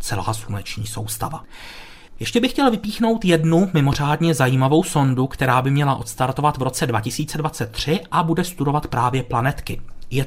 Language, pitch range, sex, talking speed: Czech, 125-175 Hz, male, 140 wpm